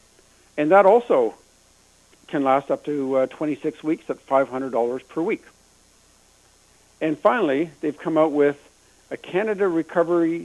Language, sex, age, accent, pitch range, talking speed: English, male, 60-79, American, 125-165 Hz, 130 wpm